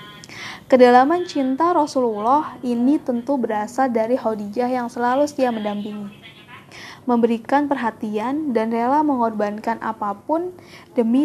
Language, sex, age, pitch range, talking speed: Indonesian, female, 20-39, 225-265 Hz, 100 wpm